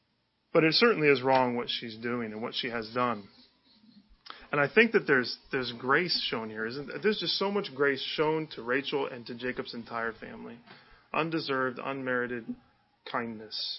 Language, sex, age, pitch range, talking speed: English, male, 20-39, 130-175 Hz, 175 wpm